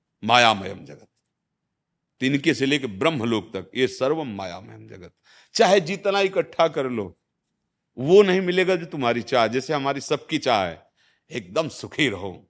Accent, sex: native, male